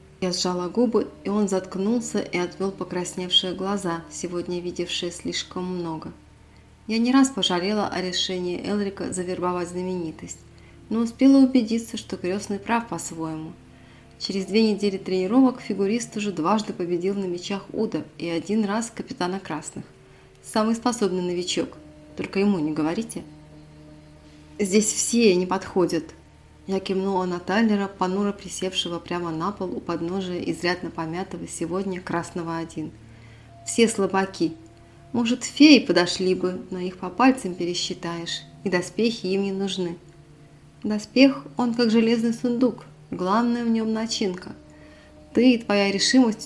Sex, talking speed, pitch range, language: female, 130 wpm, 170-210 Hz, Russian